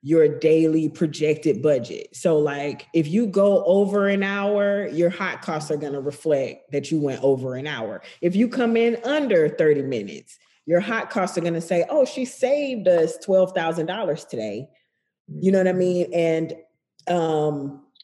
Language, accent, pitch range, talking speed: English, American, 145-195 Hz, 165 wpm